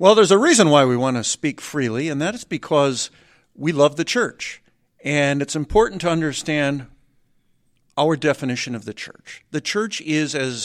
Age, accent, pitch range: 50-69, American, 130-165 Hz